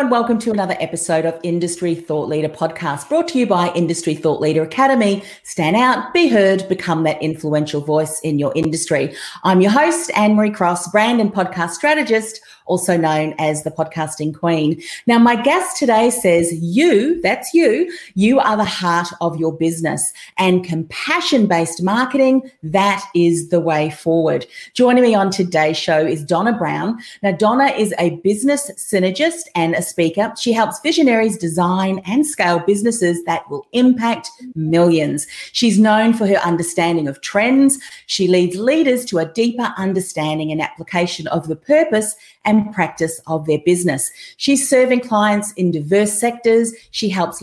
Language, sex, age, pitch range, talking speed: English, female, 40-59, 165-235 Hz, 160 wpm